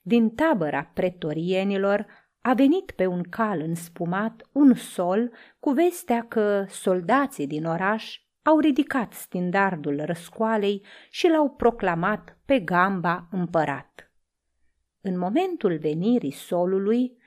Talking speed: 110 wpm